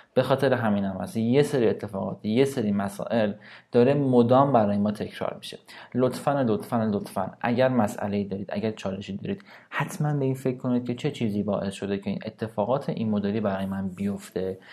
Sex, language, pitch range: male, Persian, 105-130 Hz